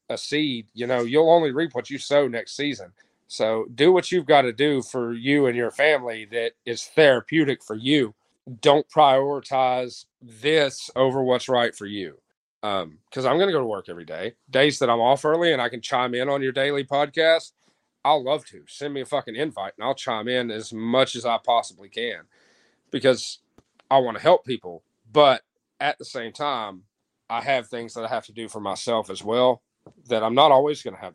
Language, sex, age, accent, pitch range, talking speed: English, male, 40-59, American, 115-140 Hz, 210 wpm